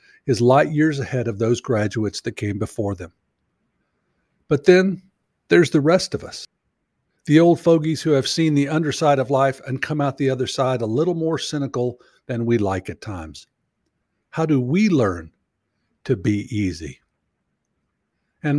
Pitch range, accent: 115-155 Hz, American